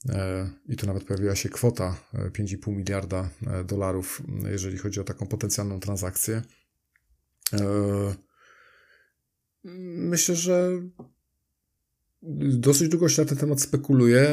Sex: male